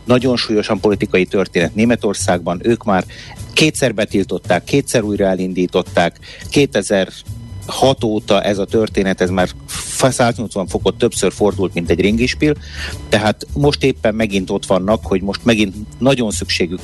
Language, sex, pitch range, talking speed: Hungarian, male, 95-120 Hz, 130 wpm